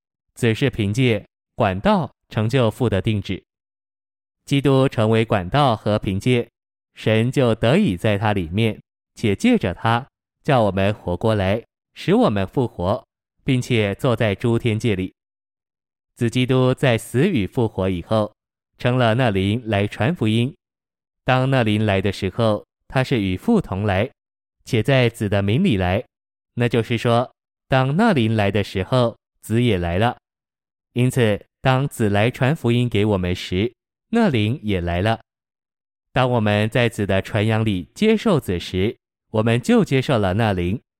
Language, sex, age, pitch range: Chinese, male, 20-39, 100-125 Hz